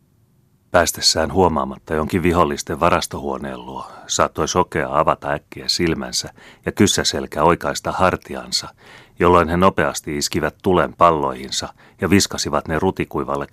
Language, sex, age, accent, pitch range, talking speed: Finnish, male, 30-49, native, 70-85 Hz, 110 wpm